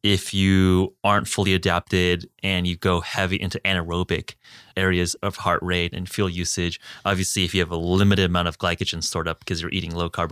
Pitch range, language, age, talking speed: 90-100 Hz, English, 20-39, 200 wpm